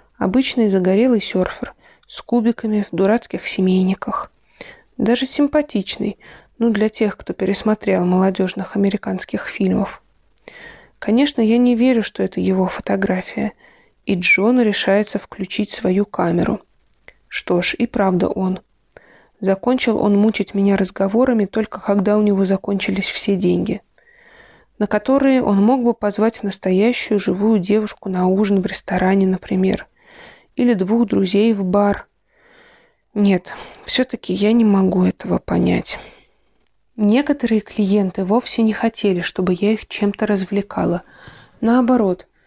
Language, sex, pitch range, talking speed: Russian, female, 195-230 Hz, 120 wpm